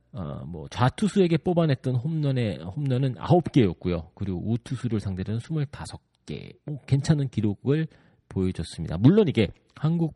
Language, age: Korean, 40-59